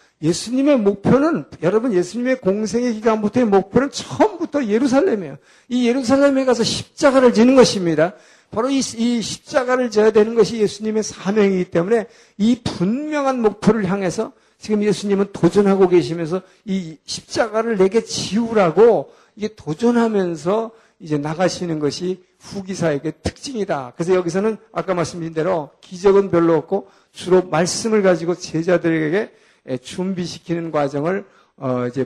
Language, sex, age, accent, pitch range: Korean, male, 50-69, native, 155-220 Hz